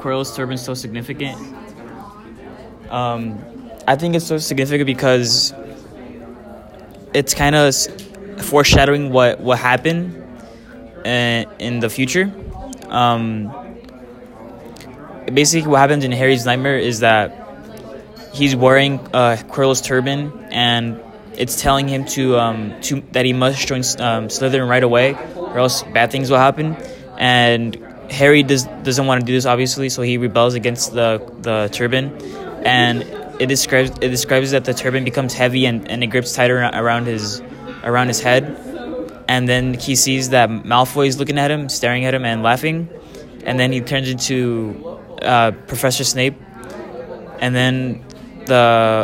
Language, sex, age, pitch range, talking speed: English, male, 10-29, 120-135 Hz, 145 wpm